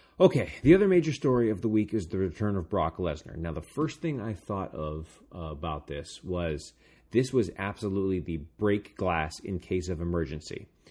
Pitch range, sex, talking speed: 85-105 Hz, male, 195 wpm